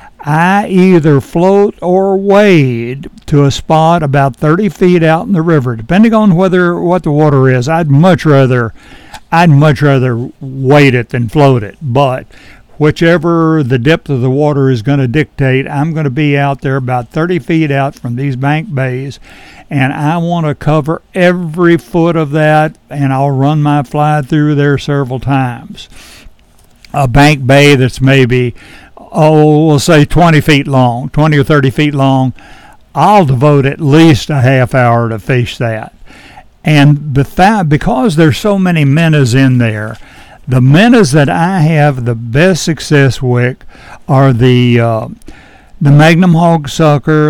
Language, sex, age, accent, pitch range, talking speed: English, male, 60-79, American, 135-160 Hz, 155 wpm